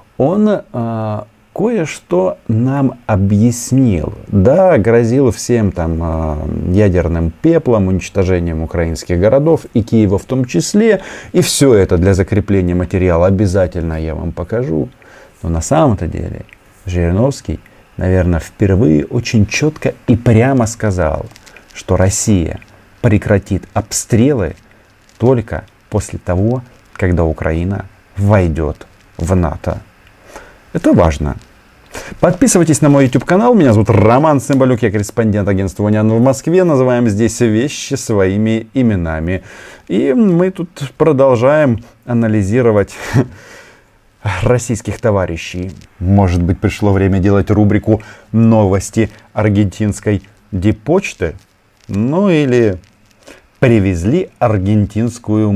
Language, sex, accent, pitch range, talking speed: Russian, male, native, 95-120 Hz, 105 wpm